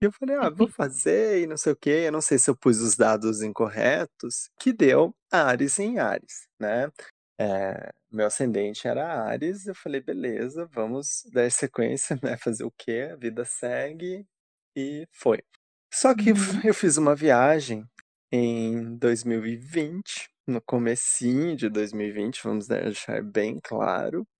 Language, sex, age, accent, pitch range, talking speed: Portuguese, male, 20-39, Brazilian, 125-190 Hz, 150 wpm